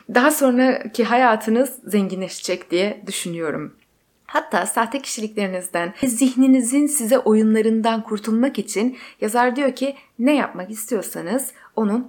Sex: female